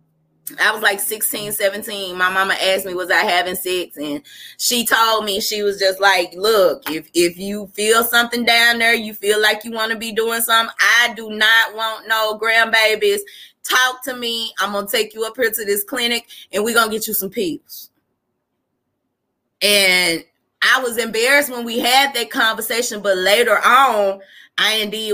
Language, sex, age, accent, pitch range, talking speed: English, female, 20-39, American, 195-240 Hz, 190 wpm